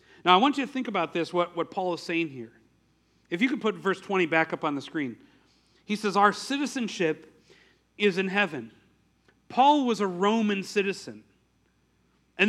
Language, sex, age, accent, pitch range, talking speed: English, male, 40-59, American, 180-225 Hz, 185 wpm